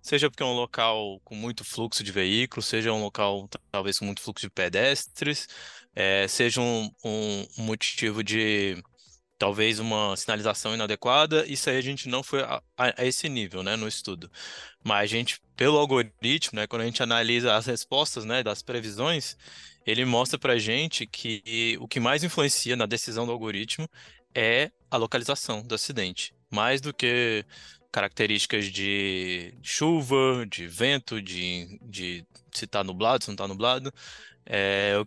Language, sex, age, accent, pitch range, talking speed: Portuguese, male, 20-39, Brazilian, 105-130 Hz, 165 wpm